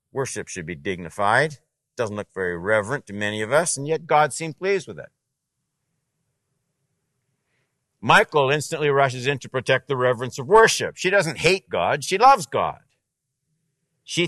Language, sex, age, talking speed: English, male, 60-79, 160 wpm